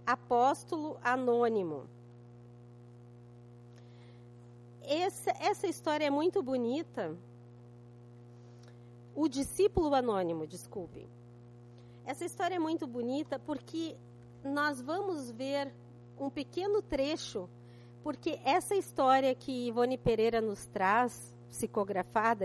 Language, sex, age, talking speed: Portuguese, female, 40-59, 90 wpm